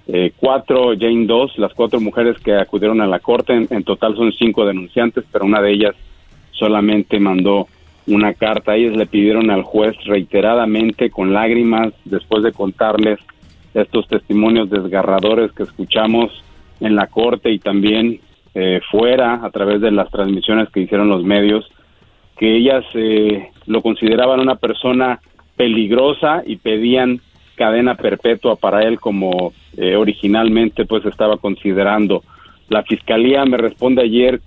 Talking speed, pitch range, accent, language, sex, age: 145 wpm, 100-115 Hz, Mexican, Spanish, male, 40-59